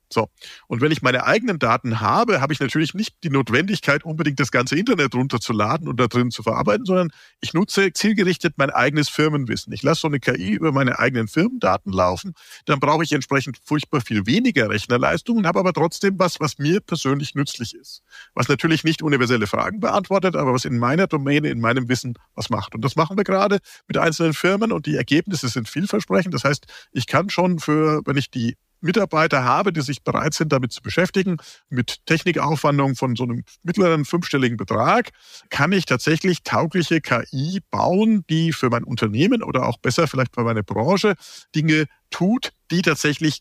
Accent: German